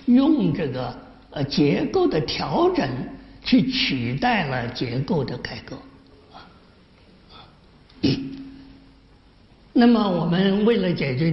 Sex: male